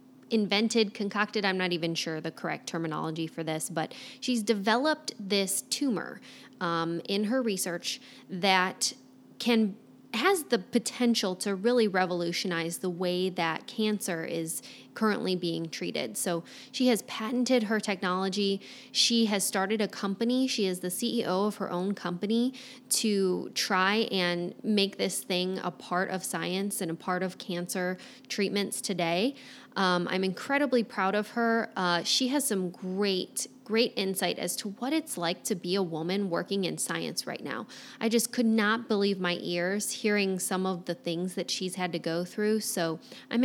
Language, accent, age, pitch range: English, American, 20-39, 180-230 Hz